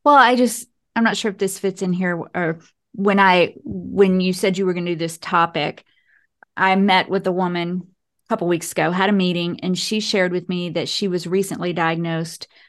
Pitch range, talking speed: 170-200 Hz, 220 wpm